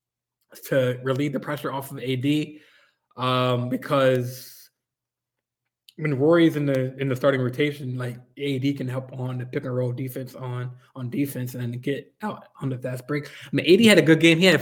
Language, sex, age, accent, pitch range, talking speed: English, male, 20-39, American, 130-150 Hz, 195 wpm